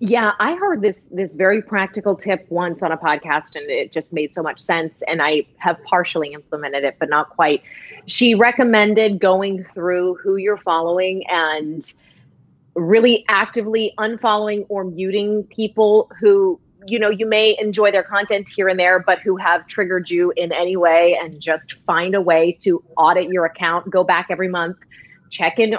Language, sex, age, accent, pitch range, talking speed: English, female, 30-49, American, 165-215 Hz, 175 wpm